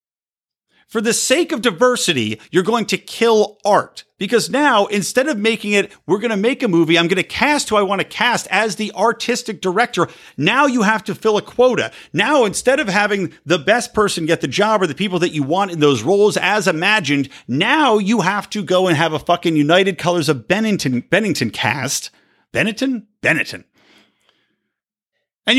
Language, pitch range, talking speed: English, 165-225 Hz, 190 wpm